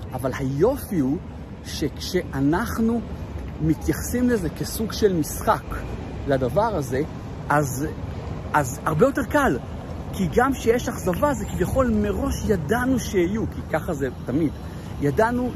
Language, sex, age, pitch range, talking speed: Hebrew, male, 50-69, 130-185 Hz, 115 wpm